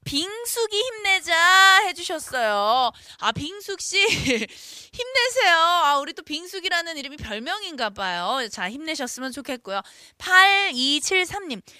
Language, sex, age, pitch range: Korean, female, 20-39, 225-345 Hz